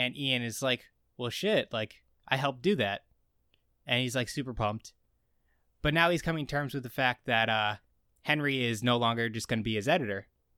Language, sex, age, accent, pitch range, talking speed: English, male, 20-39, American, 105-130 Hz, 210 wpm